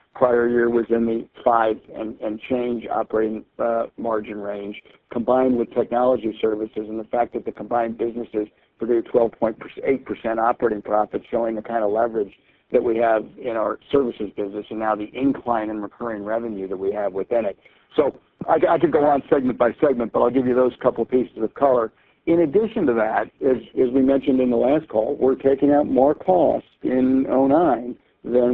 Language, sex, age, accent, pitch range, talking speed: English, male, 50-69, American, 115-135 Hz, 190 wpm